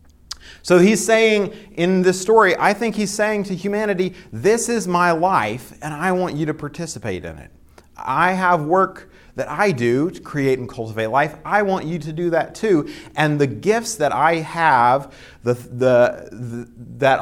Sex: male